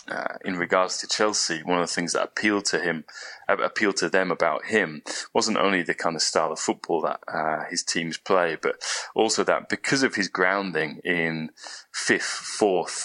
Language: English